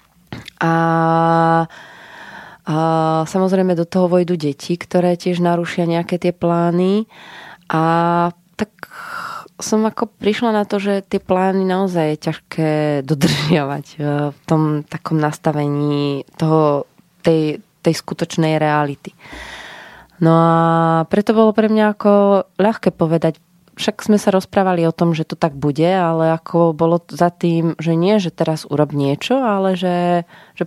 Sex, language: female, Slovak